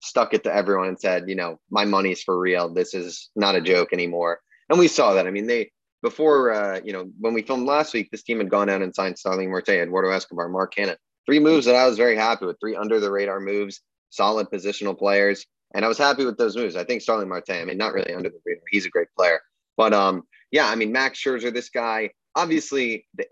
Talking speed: 245 wpm